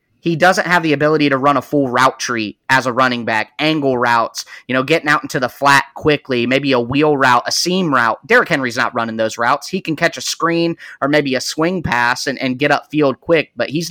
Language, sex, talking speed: English, male, 240 wpm